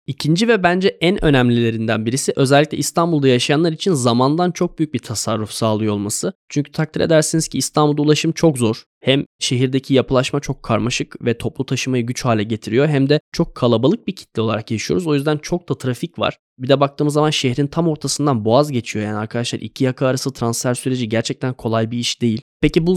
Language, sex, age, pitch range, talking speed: Turkish, male, 10-29, 120-160 Hz, 190 wpm